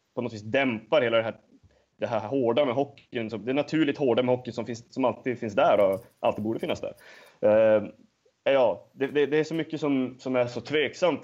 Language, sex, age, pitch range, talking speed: English, male, 20-39, 110-130 Hz, 220 wpm